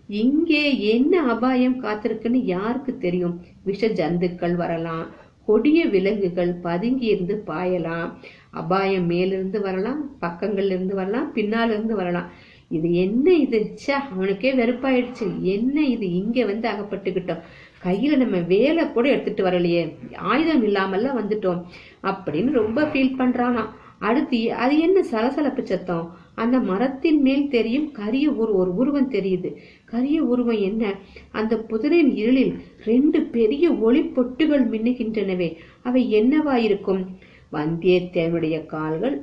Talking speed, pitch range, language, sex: 80 wpm, 180-250 Hz, Tamil, female